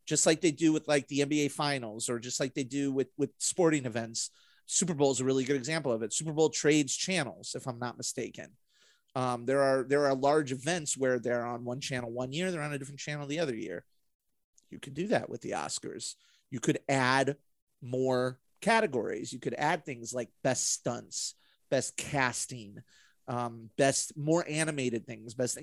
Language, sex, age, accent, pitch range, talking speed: English, male, 30-49, American, 125-165 Hz, 195 wpm